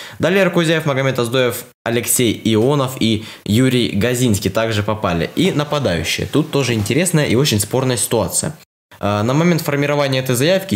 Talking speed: 140 wpm